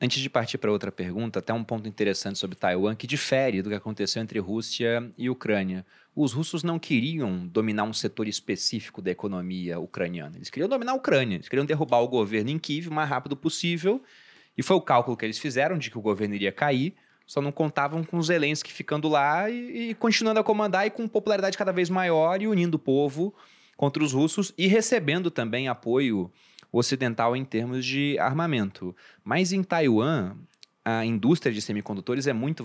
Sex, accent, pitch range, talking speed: male, Brazilian, 120-170 Hz, 195 wpm